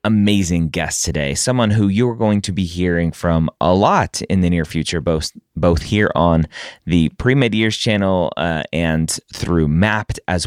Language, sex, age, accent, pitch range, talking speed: English, male, 30-49, American, 85-105 Hz, 170 wpm